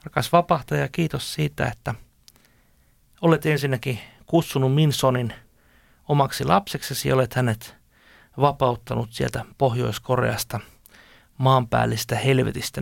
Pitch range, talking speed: 115-140 Hz, 90 wpm